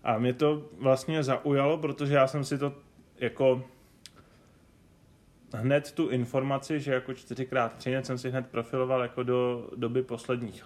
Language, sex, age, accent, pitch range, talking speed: Czech, male, 20-39, native, 110-130 Hz, 145 wpm